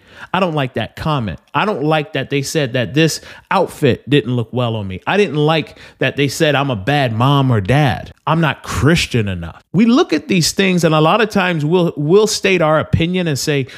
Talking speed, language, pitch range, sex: 225 wpm, English, 120-160 Hz, male